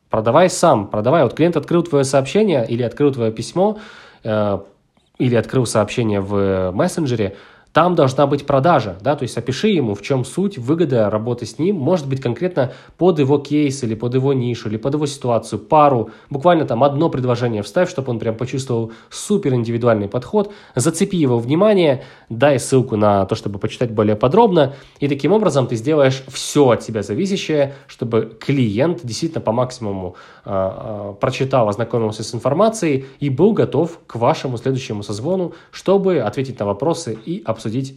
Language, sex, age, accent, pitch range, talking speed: Ukrainian, male, 20-39, native, 110-150 Hz, 165 wpm